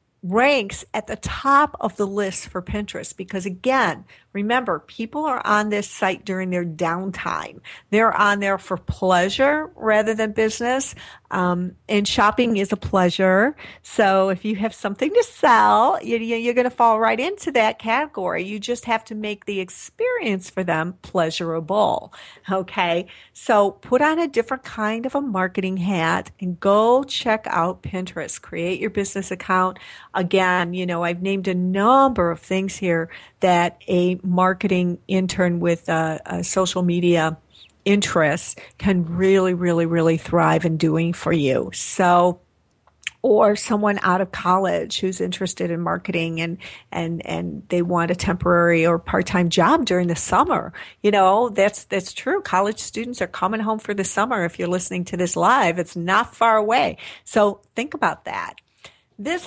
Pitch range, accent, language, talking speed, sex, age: 180-220 Hz, American, English, 160 wpm, female, 50-69